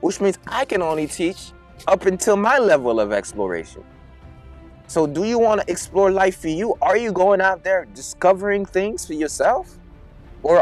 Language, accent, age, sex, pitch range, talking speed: English, American, 20-39, male, 170-215 Hz, 175 wpm